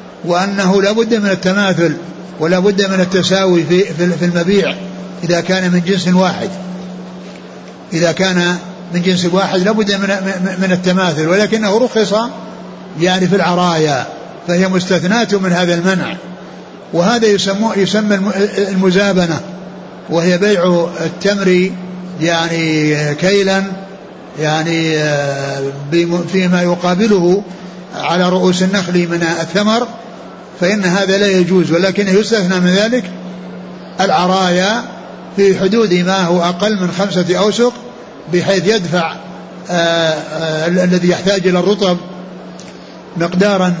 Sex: male